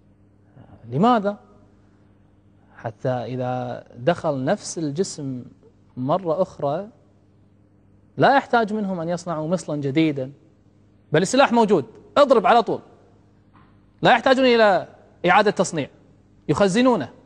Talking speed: 95 wpm